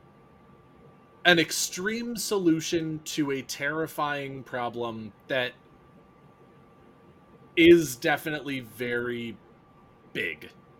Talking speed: 65 wpm